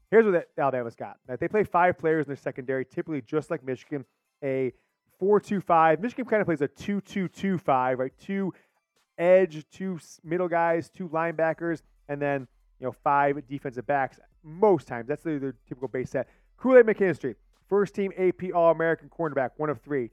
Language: English